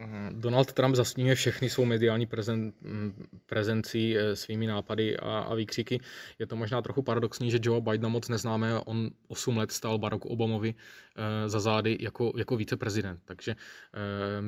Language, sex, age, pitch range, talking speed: Czech, male, 20-39, 110-120 Hz, 155 wpm